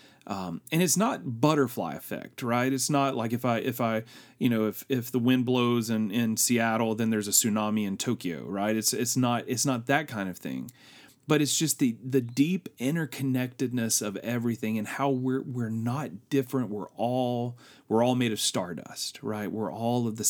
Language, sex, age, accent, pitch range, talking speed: English, male, 30-49, American, 105-135 Hz, 200 wpm